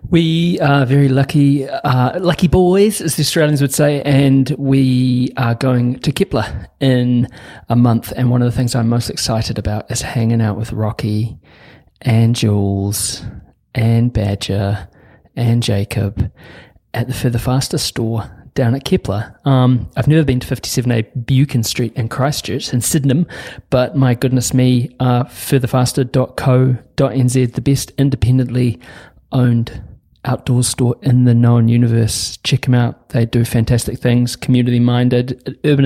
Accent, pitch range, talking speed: Australian, 115-140 Hz, 145 wpm